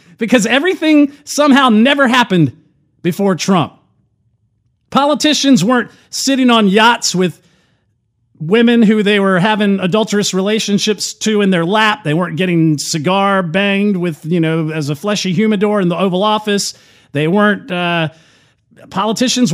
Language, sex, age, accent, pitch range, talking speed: English, male, 40-59, American, 150-230 Hz, 135 wpm